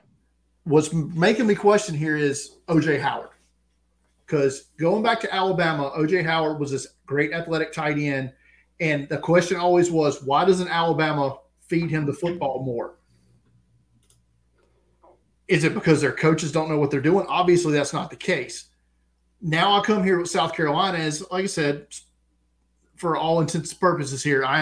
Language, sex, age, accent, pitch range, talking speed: English, male, 40-59, American, 135-170 Hz, 165 wpm